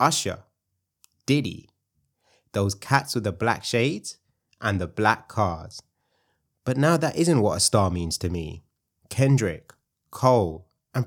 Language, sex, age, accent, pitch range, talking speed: English, male, 20-39, British, 95-120 Hz, 135 wpm